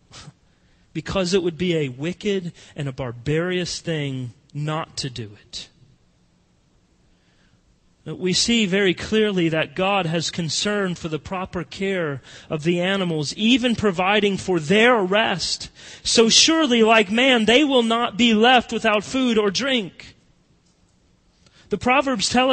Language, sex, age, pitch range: English, male, 40-59, 190-270 Hz